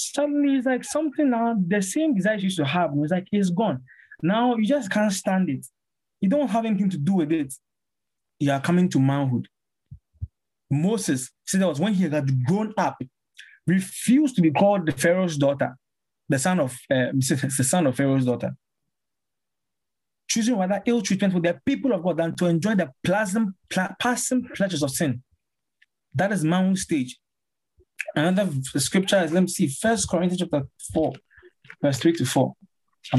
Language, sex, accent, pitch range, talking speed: English, male, Nigerian, 135-195 Hz, 170 wpm